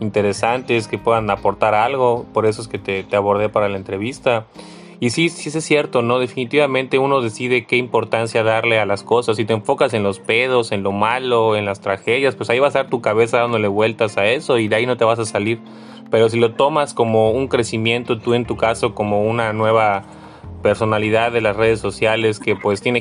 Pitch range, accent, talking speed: 105-120 Hz, Mexican, 220 wpm